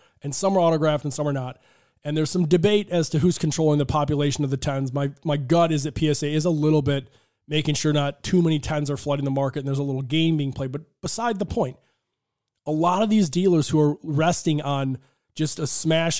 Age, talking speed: 20-39, 235 wpm